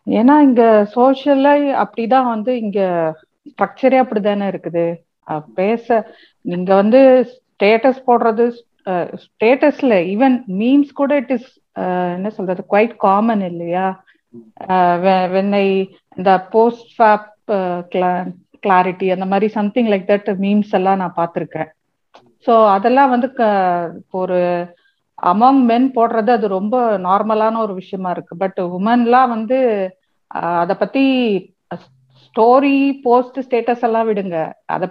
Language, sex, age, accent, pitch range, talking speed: Tamil, female, 50-69, native, 185-245 Hz, 105 wpm